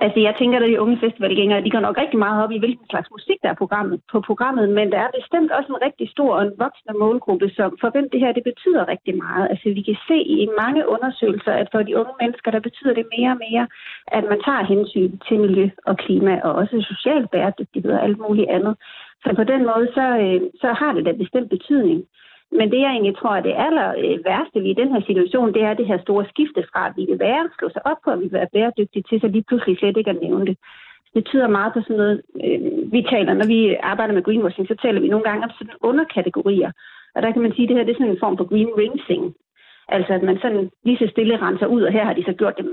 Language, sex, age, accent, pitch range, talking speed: Danish, female, 40-59, native, 205-255 Hz, 255 wpm